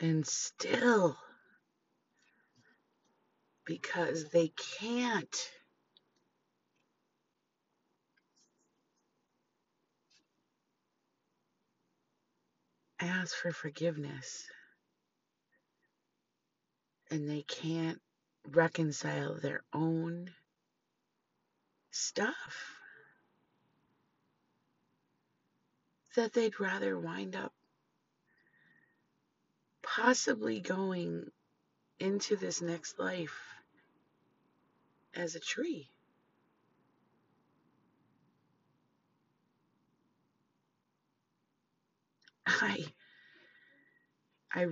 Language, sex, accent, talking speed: English, female, American, 40 wpm